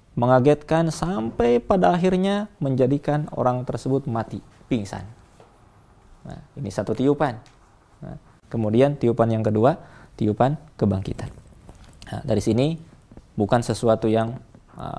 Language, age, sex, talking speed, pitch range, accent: Indonesian, 20-39, male, 110 wpm, 110-140 Hz, native